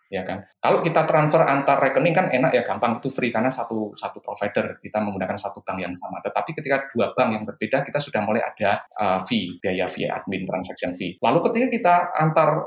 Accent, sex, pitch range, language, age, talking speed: native, male, 110-155 Hz, Indonesian, 20-39, 210 wpm